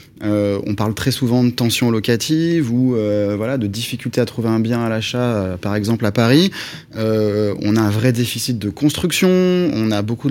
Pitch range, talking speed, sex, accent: 110-135 Hz, 205 wpm, male, French